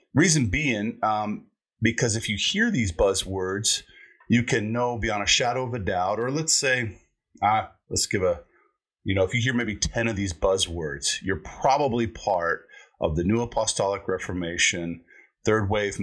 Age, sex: 40-59, male